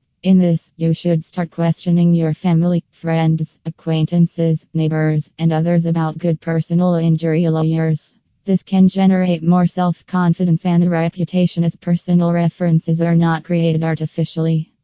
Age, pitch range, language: 20-39, 165-180 Hz, English